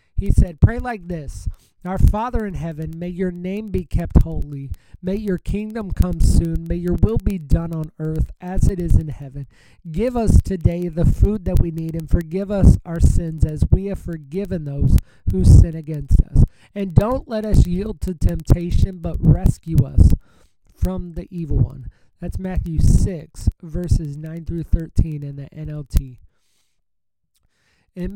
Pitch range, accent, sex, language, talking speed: 125-180 Hz, American, male, English, 170 wpm